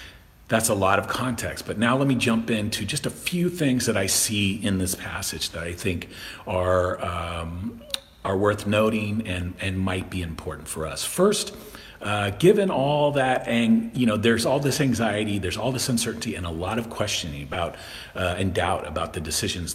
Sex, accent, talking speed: male, American, 205 wpm